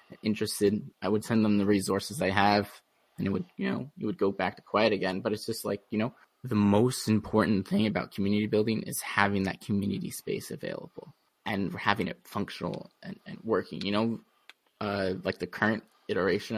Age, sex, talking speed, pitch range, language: 20-39, male, 195 wpm, 100-110 Hz, English